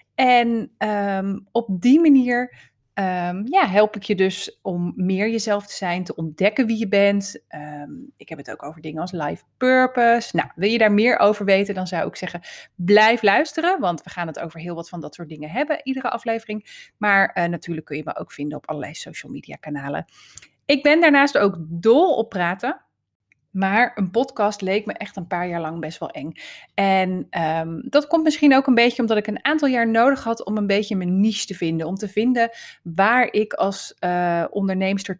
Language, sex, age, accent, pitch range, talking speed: Dutch, female, 30-49, Dutch, 175-235 Hz, 205 wpm